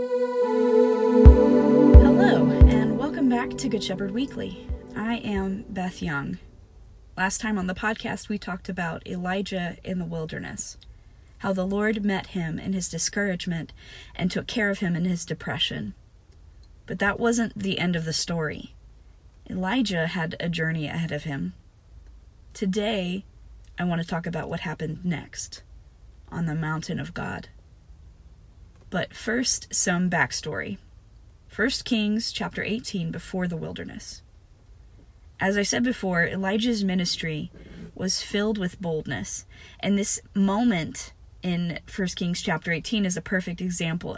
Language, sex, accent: English, female, American